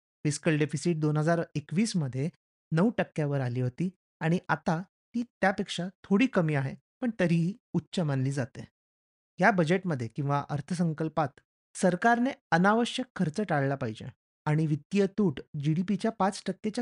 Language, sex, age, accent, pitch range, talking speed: Marathi, male, 30-49, native, 150-200 Hz, 95 wpm